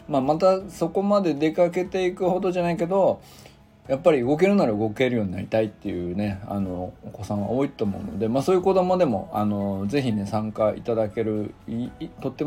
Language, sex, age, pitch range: Japanese, male, 20-39, 105-140 Hz